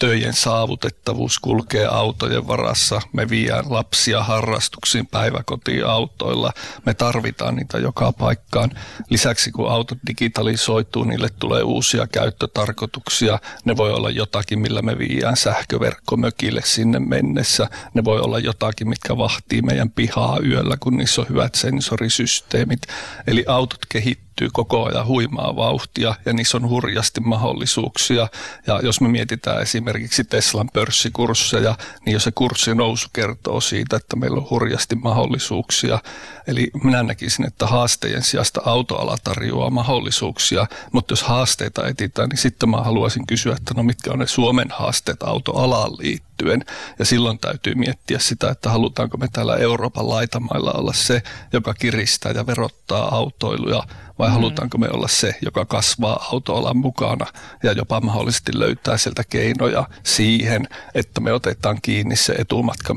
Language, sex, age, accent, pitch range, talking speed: Finnish, male, 50-69, native, 110-125 Hz, 140 wpm